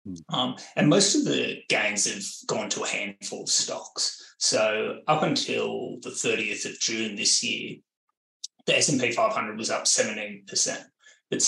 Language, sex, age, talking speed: English, male, 20-39, 165 wpm